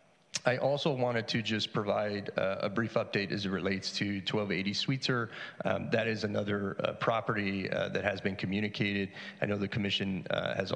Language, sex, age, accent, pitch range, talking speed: English, male, 40-59, American, 100-120 Hz, 180 wpm